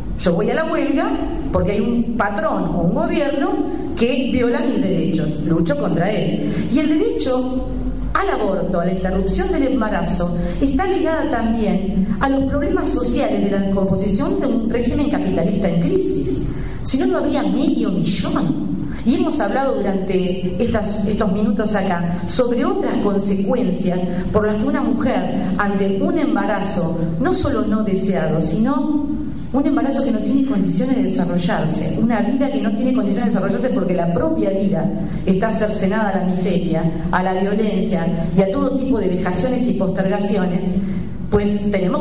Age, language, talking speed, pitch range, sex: 40-59, Spanish, 160 wpm, 180-260 Hz, female